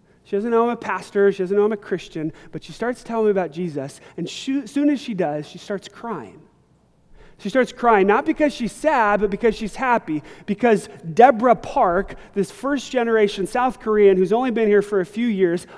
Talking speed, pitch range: 210 wpm, 175-220 Hz